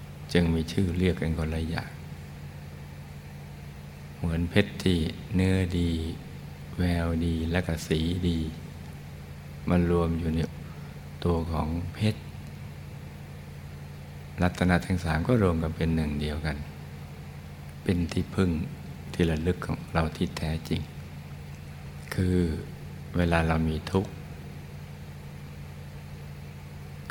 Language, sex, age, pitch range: Thai, male, 60-79, 75-85 Hz